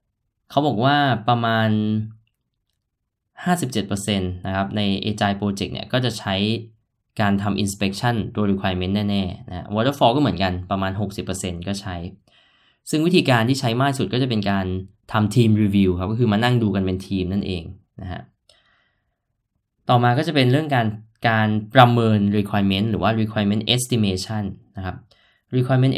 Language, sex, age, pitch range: Thai, male, 10-29, 100-120 Hz